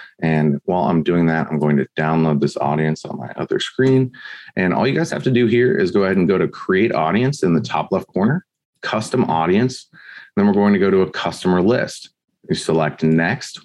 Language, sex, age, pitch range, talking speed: English, male, 30-49, 85-110 Hz, 220 wpm